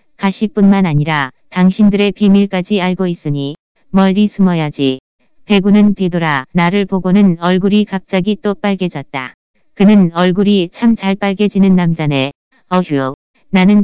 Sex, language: female, Korean